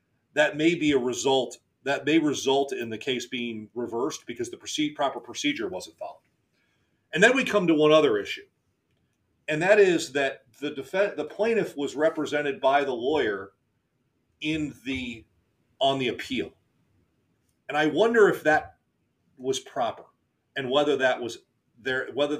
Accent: American